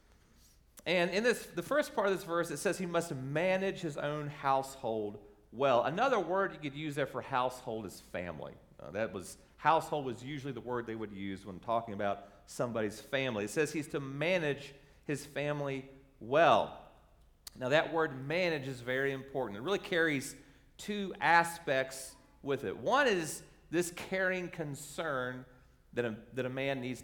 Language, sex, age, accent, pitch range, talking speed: English, male, 40-59, American, 125-175 Hz, 170 wpm